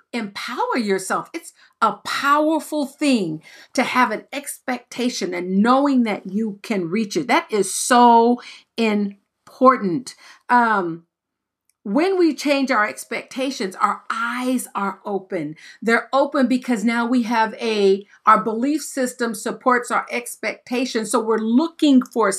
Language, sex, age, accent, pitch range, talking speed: English, female, 50-69, American, 205-265 Hz, 130 wpm